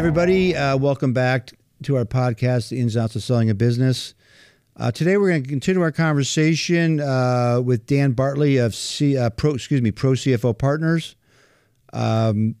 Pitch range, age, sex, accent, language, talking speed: 125-155 Hz, 50-69, male, American, English, 175 wpm